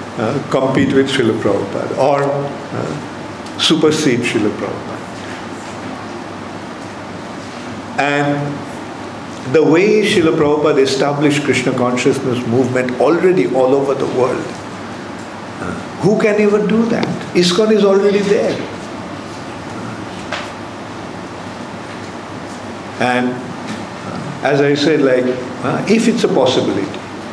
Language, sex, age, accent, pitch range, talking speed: English, male, 50-69, Indian, 130-175 Hz, 95 wpm